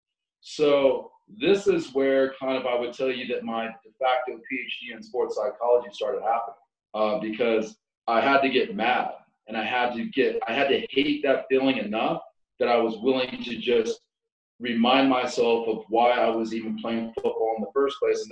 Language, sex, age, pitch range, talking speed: English, male, 30-49, 115-135 Hz, 195 wpm